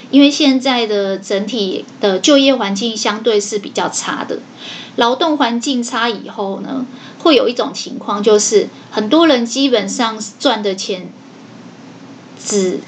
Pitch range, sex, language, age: 215-265 Hz, female, Chinese, 20-39